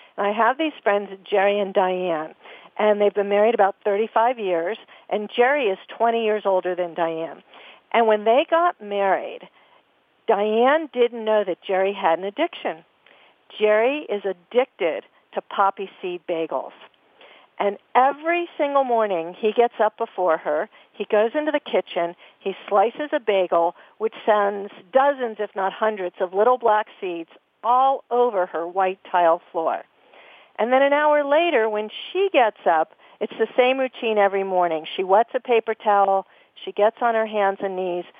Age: 50-69